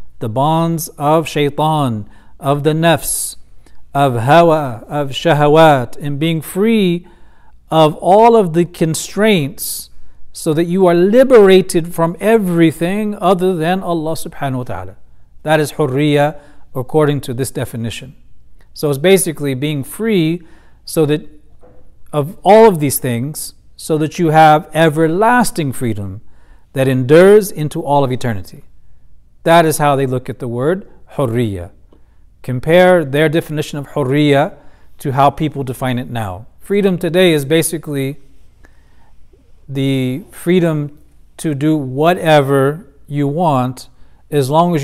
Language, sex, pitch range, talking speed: English, male, 130-165 Hz, 130 wpm